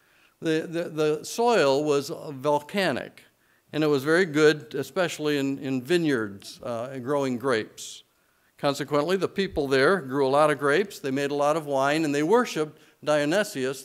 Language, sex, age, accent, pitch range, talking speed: English, male, 50-69, American, 140-170 Hz, 165 wpm